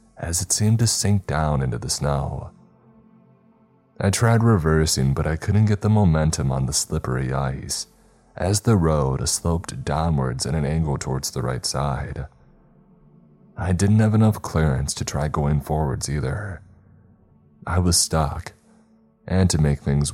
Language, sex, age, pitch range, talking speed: English, male, 30-49, 75-100 Hz, 150 wpm